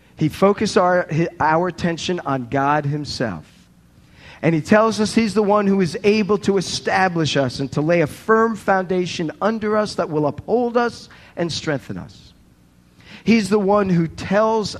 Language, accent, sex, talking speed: English, American, male, 165 wpm